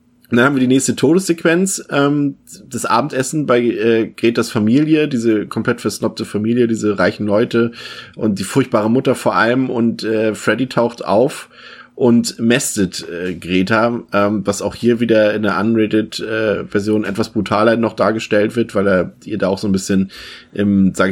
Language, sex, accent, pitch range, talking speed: German, male, German, 95-120 Hz, 170 wpm